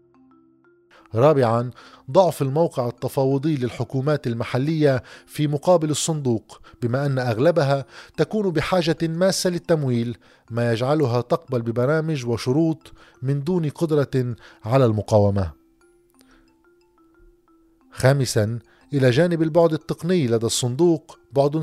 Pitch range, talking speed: 125-165 Hz, 95 wpm